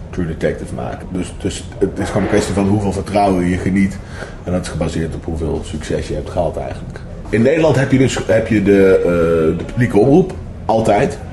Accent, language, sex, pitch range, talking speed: Dutch, Dutch, male, 95-115 Hz, 205 wpm